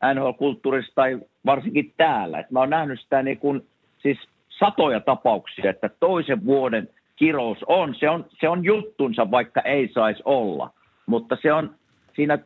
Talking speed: 150 wpm